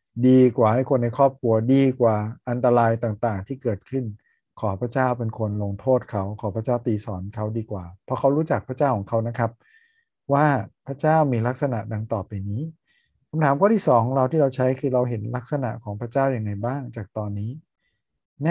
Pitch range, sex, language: 110-130 Hz, male, Thai